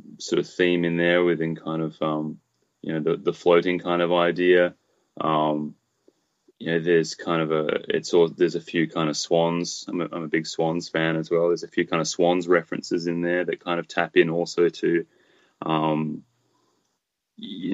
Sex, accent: male, Australian